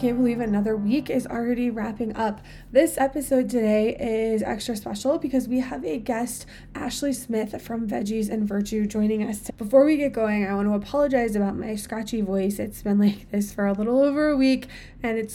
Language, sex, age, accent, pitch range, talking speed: English, female, 20-39, American, 205-250 Hz, 200 wpm